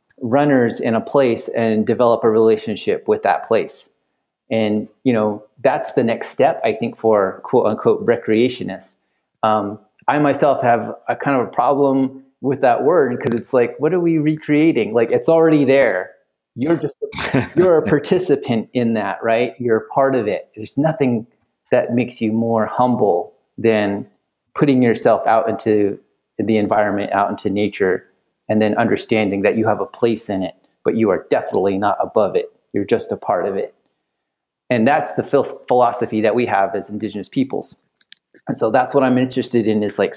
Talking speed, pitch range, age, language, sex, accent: 175 wpm, 110-135 Hz, 30-49, English, male, American